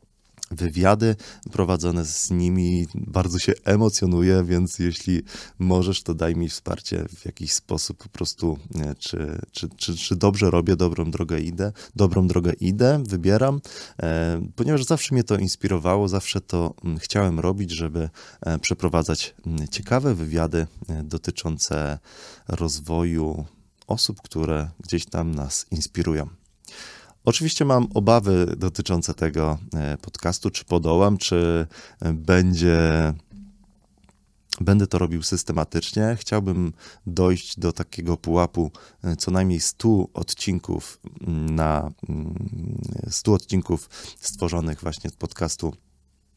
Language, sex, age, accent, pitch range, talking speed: Polish, male, 20-39, native, 80-100 Hz, 105 wpm